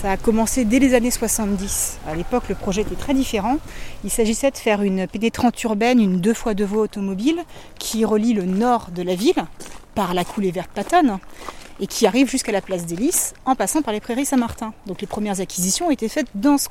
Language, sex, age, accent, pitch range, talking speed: French, female, 30-49, French, 190-250 Hz, 225 wpm